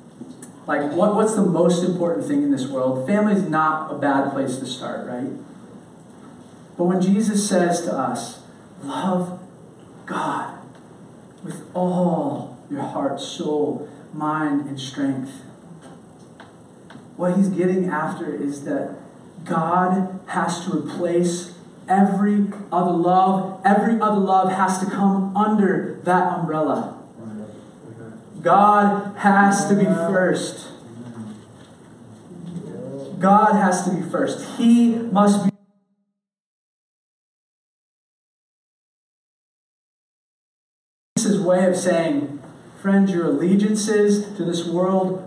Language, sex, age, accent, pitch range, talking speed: English, male, 30-49, American, 155-200 Hz, 105 wpm